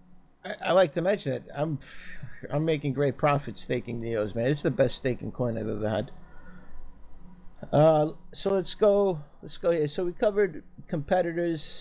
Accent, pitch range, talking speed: American, 135-195 Hz, 165 wpm